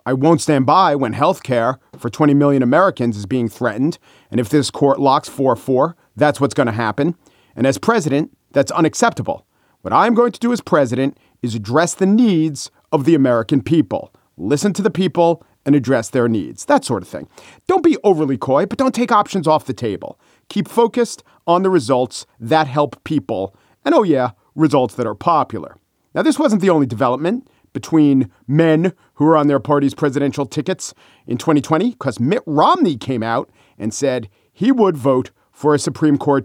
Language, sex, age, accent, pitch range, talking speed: English, male, 40-59, American, 135-200 Hz, 185 wpm